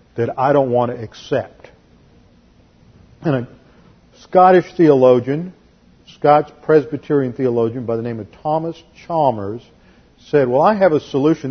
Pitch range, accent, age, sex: 120-160 Hz, American, 50-69, male